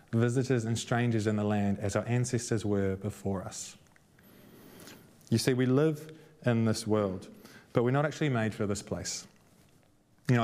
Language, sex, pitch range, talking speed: English, male, 105-125 Hz, 165 wpm